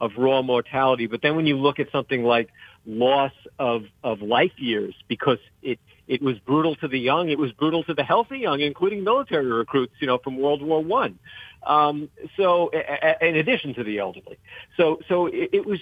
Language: English